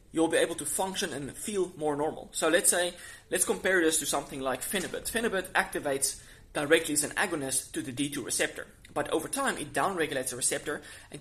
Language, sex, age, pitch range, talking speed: English, male, 20-39, 140-175 Hz, 200 wpm